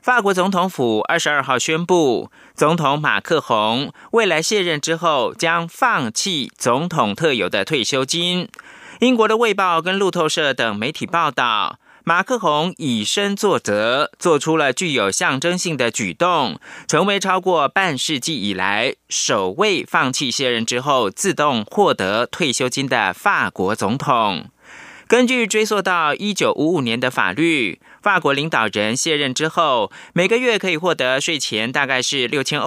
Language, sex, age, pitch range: German, male, 30-49, 135-190 Hz